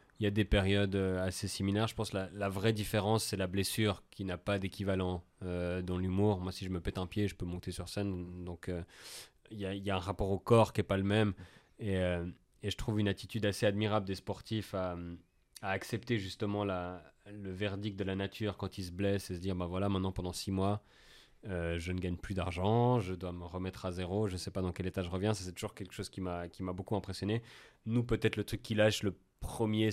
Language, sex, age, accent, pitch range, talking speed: French, male, 30-49, French, 95-105 Hz, 255 wpm